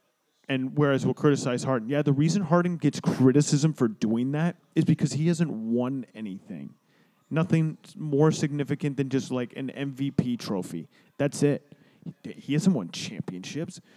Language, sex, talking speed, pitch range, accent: English, male, 150 wpm, 135-170 Hz, American